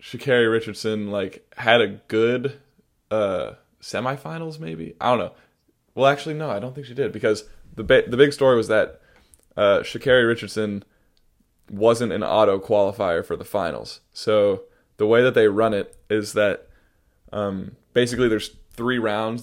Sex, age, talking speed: male, 20-39, 160 wpm